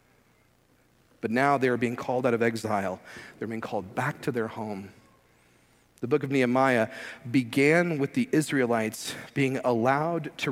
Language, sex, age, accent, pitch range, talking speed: English, male, 40-59, American, 100-145 Hz, 155 wpm